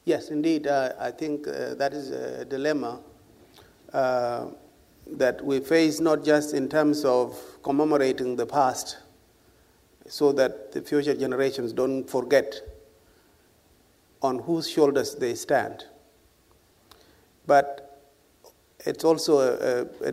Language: English